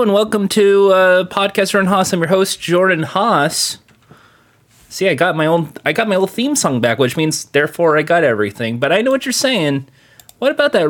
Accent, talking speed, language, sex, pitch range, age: American, 215 wpm, English, male, 120-180 Hz, 30-49